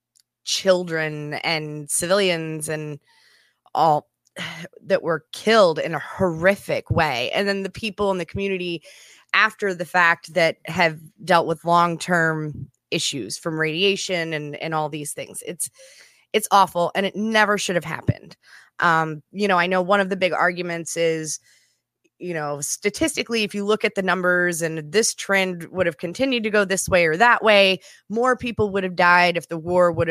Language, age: English, 20-39